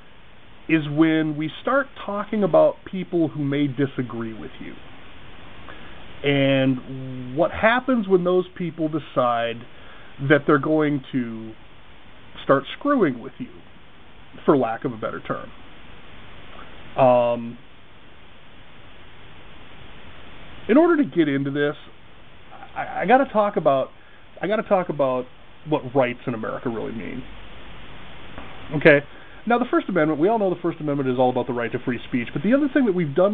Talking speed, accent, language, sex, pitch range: 150 wpm, American, English, male, 125-175 Hz